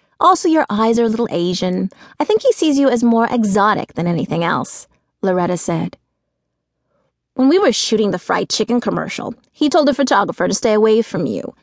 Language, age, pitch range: English, 30-49, 190-280 Hz